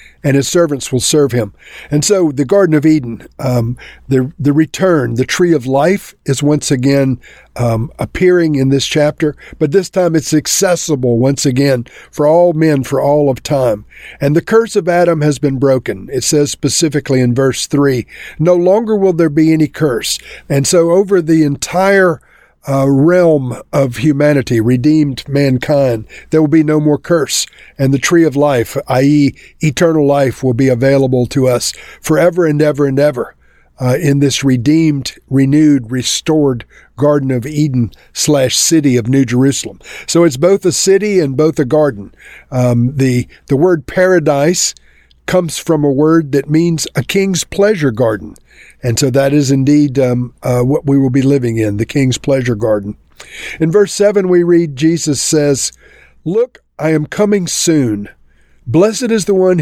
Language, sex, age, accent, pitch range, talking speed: English, male, 50-69, American, 135-165 Hz, 170 wpm